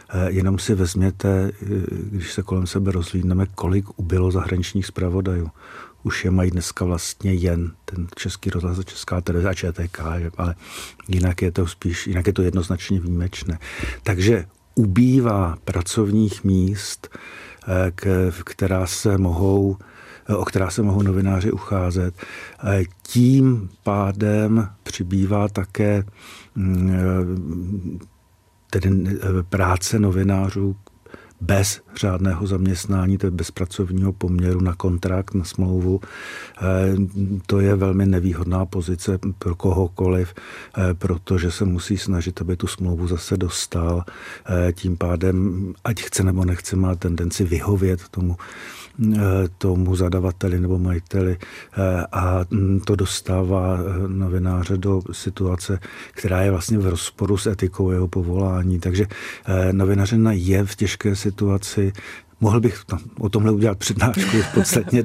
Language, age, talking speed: Czech, 50-69, 115 wpm